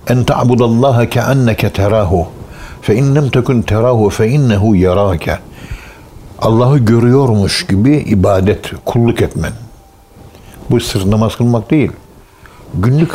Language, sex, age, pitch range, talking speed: Turkish, male, 60-79, 100-125 Hz, 100 wpm